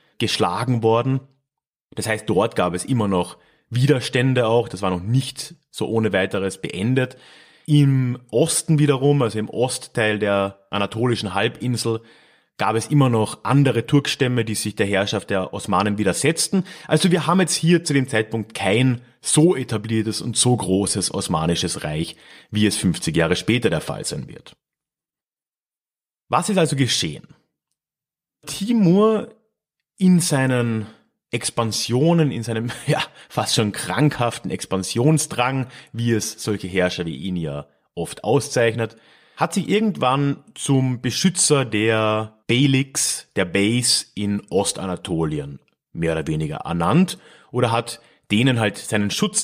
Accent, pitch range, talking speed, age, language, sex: German, 110-155 Hz, 135 wpm, 30-49, German, male